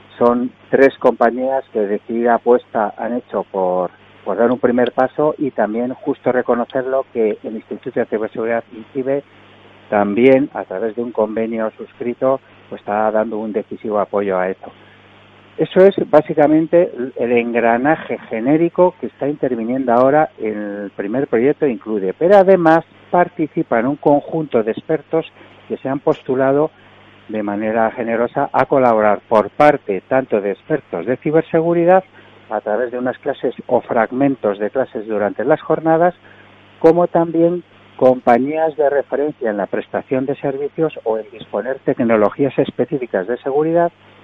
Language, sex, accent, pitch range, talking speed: Spanish, male, Spanish, 105-140 Hz, 145 wpm